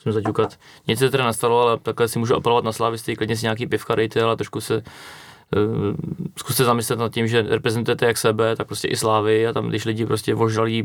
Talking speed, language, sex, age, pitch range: 205 wpm, Czech, male, 20-39, 110-125 Hz